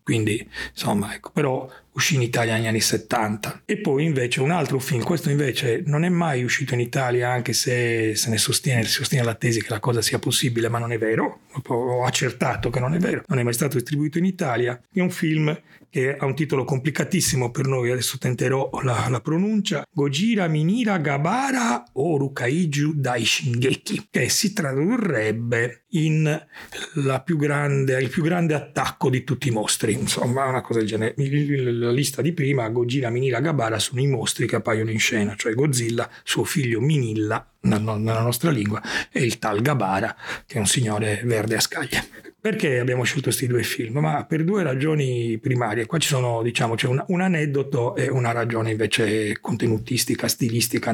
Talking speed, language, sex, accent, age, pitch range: 180 wpm, Italian, male, native, 40-59, 120-150 Hz